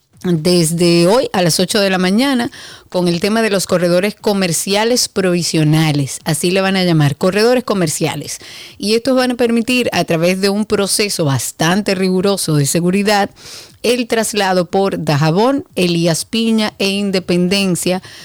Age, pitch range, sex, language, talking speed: 30-49, 165-205 Hz, female, Spanish, 150 wpm